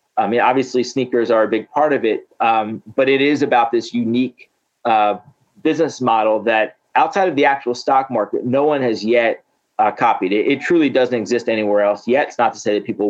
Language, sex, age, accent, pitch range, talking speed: English, male, 30-49, American, 115-145 Hz, 215 wpm